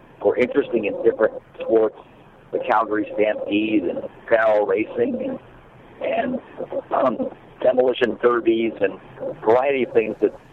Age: 60-79